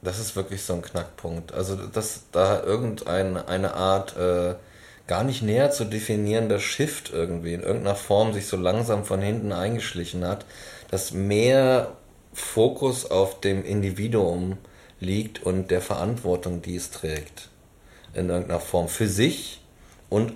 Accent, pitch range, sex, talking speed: German, 90-105 Hz, male, 140 wpm